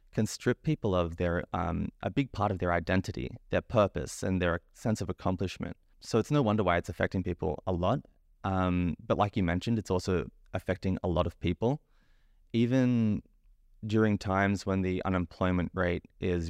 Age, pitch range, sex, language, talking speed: 20-39, 90-105 Hz, male, English, 180 wpm